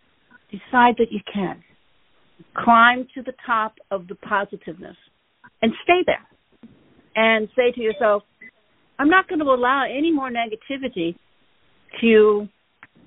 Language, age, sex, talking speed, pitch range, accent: English, 60-79, female, 125 wpm, 200-275 Hz, American